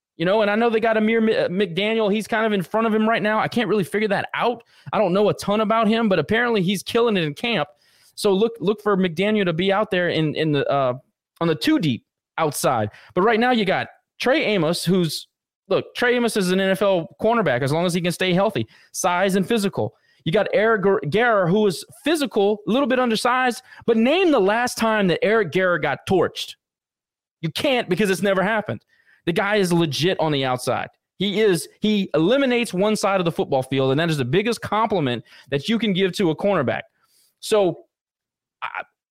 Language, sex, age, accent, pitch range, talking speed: English, male, 20-39, American, 165-220 Hz, 215 wpm